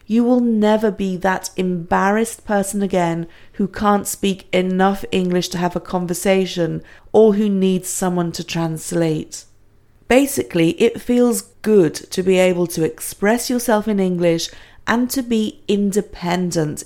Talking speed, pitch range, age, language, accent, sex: 140 wpm, 170-210 Hz, 40-59, English, British, female